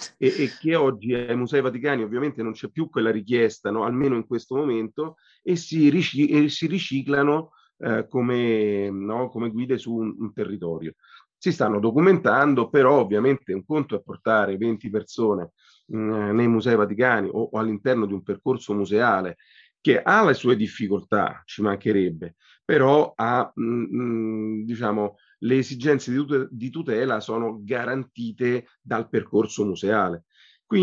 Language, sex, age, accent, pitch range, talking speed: Italian, male, 30-49, native, 105-140 Hz, 135 wpm